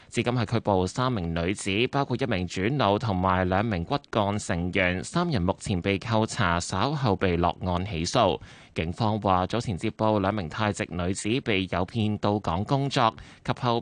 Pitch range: 95-125 Hz